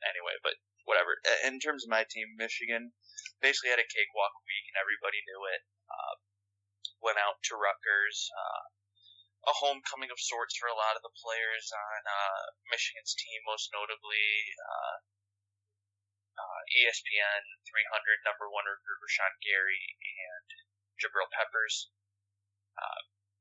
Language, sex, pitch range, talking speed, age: English, male, 100-110 Hz, 140 wpm, 20-39